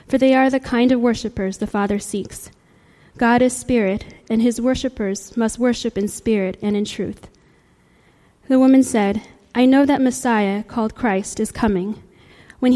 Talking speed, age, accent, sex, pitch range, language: 165 wpm, 10-29, American, female, 210-255 Hz, English